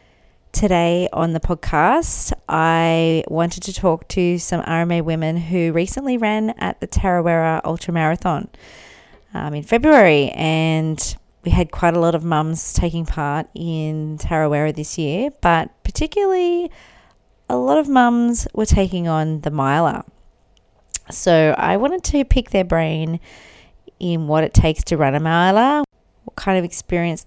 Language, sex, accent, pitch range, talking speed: English, female, Australian, 155-200 Hz, 145 wpm